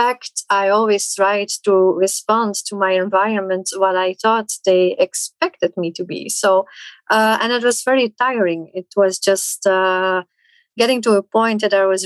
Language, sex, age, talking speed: English, female, 30-49, 170 wpm